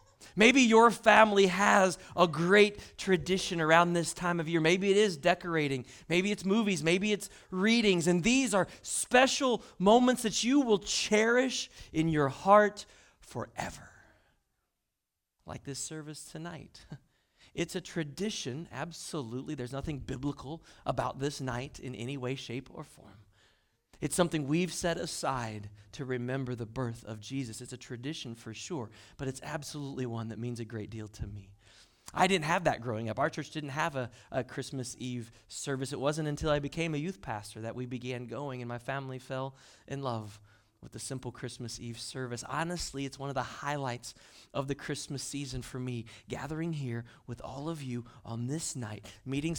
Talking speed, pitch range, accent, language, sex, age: 175 wpm, 120-165 Hz, American, English, male, 40-59